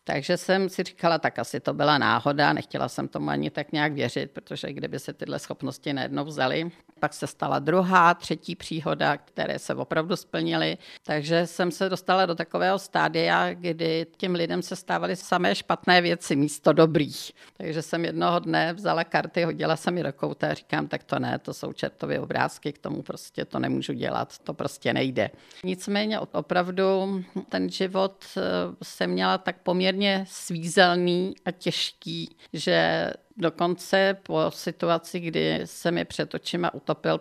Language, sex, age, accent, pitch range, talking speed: Czech, female, 50-69, native, 150-185 Hz, 160 wpm